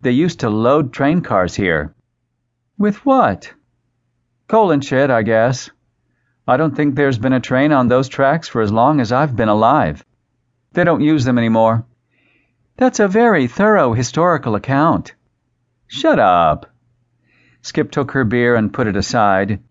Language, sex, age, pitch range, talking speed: English, male, 50-69, 115-145 Hz, 160 wpm